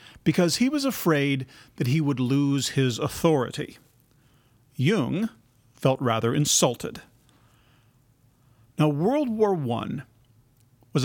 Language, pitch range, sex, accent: English, 125-160 Hz, male, American